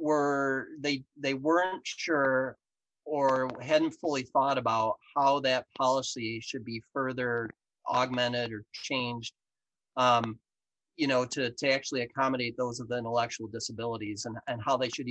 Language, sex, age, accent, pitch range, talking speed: English, male, 30-49, American, 115-135 Hz, 140 wpm